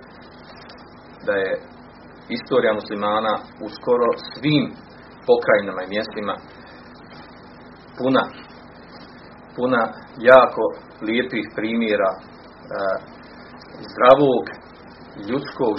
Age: 40-59